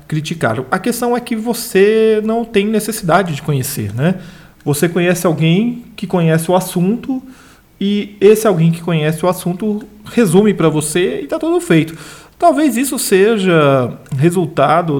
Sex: male